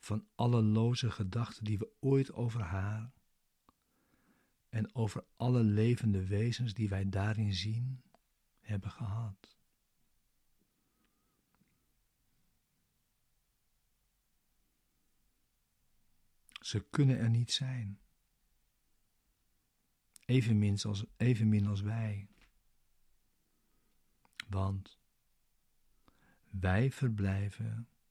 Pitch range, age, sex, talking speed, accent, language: 100-120 Hz, 50-69, male, 65 wpm, Dutch, Dutch